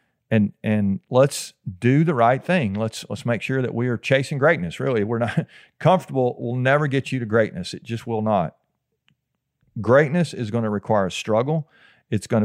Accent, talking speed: American, 190 wpm